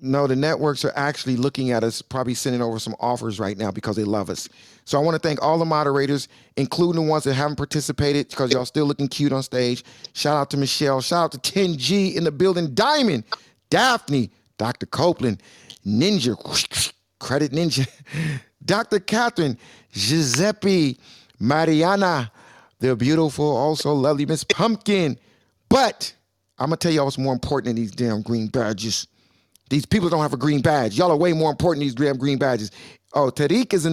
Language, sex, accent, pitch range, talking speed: English, male, American, 125-175 Hz, 180 wpm